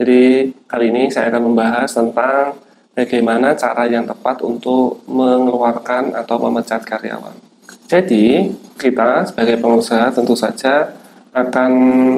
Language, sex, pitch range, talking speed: Indonesian, male, 120-130 Hz, 115 wpm